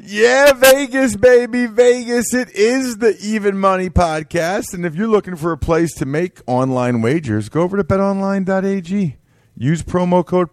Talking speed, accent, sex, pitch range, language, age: 160 wpm, American, male, 105-155 Hz, English, 40-59